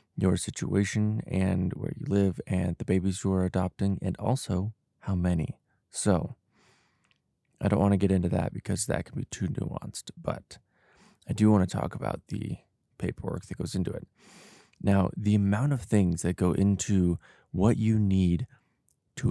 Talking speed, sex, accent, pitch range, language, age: 170 wpm, male, American, 90-105 Hz, English, 20-39